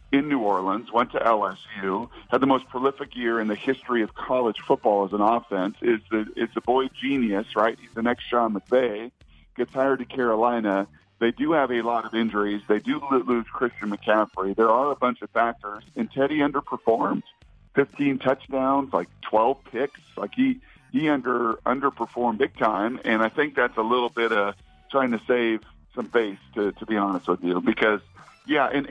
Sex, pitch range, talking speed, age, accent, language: male, 105-135 Hz, 185 wpm, 50-69, American, English